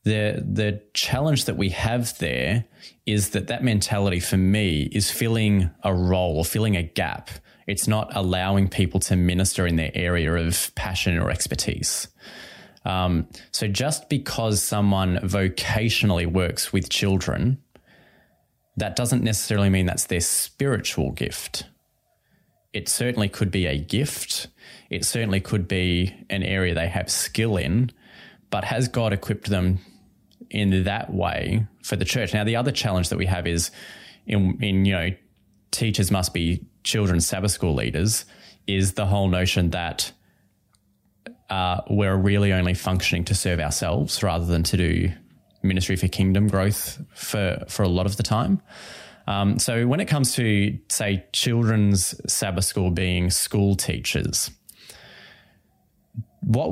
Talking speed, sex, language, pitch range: 145 wpm, male, English, 90-110 Hz